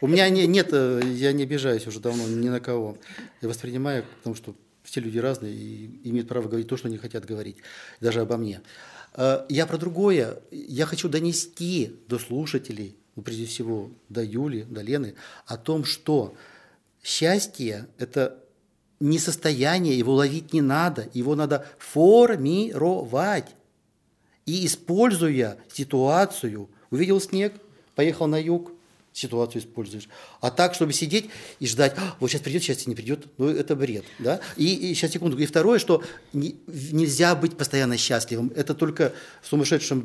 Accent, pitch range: native, 120-160 Hz